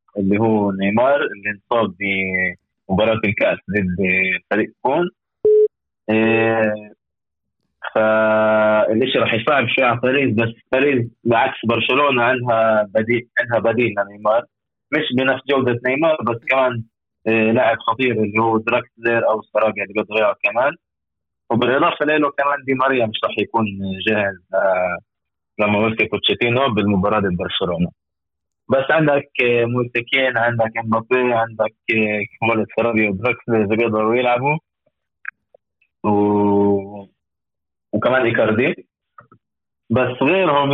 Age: 20-39